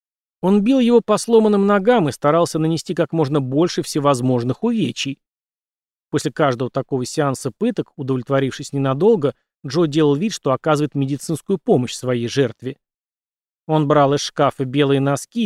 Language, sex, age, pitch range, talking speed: Russian, male, 30-49, 135-180 Hz, 140 wpm